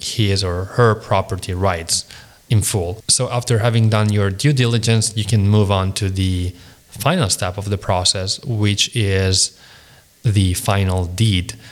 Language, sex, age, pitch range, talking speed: English, male, 20-39, 95-115 Hz, 155 wpm